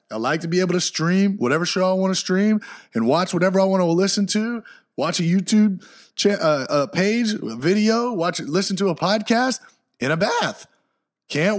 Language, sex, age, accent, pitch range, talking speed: English, male, 30-49, American, 125-185 Hz, 185 wpm